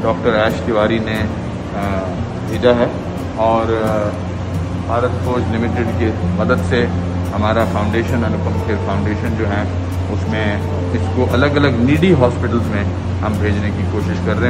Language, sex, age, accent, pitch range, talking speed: English, male, 40-59, Indian, 90-120 Hz, 130 wpm